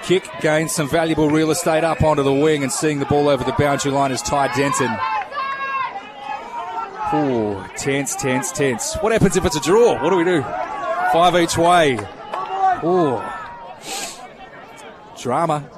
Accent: Australian